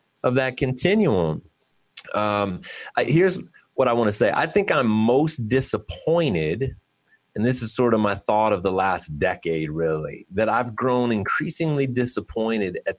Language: English